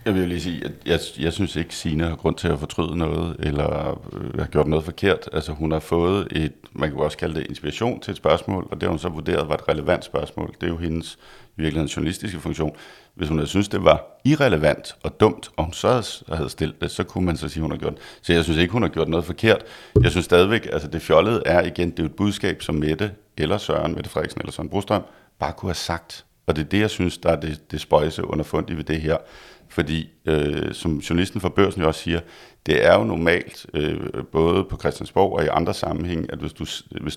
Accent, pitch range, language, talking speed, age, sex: native, 80-90 Hz, Danish, 245 wpm, 60-79, male